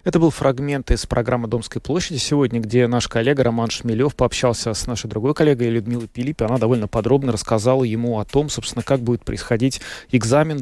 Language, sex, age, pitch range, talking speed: Russian, male, 20-39, 115-130 Hz, 180 wpm